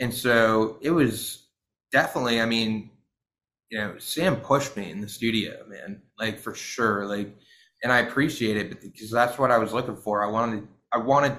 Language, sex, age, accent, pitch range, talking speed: English, male, 20-39, American, 110-130 Hz, 185 wpm